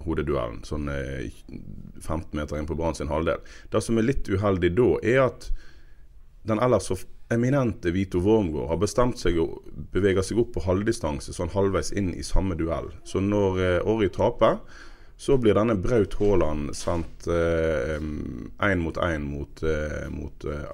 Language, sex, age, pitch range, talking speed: English, male, 30-49, 80-105 Hz, 170 wpm